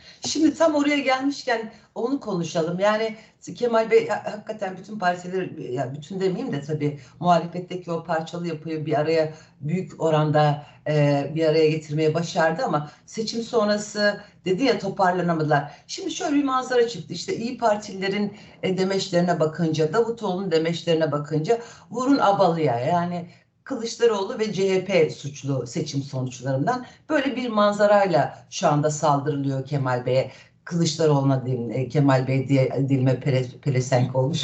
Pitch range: 150-215 Hz